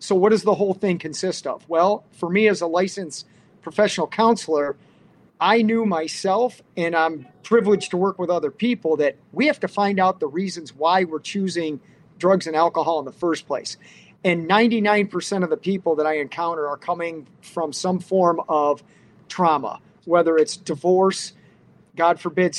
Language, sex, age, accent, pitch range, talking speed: English, male, 40-59, American, 160-195 Hz, 175 wpm